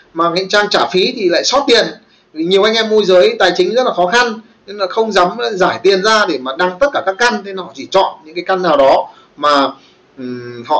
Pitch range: 175-245 Hz